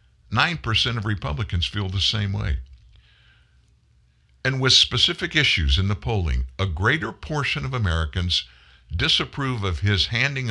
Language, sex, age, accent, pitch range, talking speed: English, male, 60-79, American, 75-120 Hz, 125 wpm